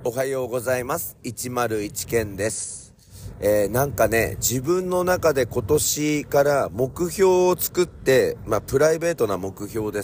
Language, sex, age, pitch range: Japanese, male, 40-59, 105-150 Hz